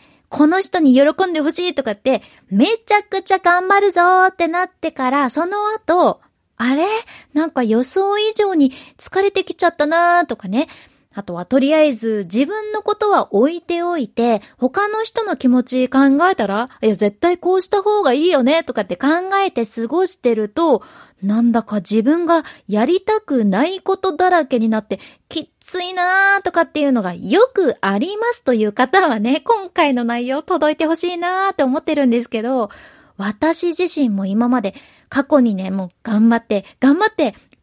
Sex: female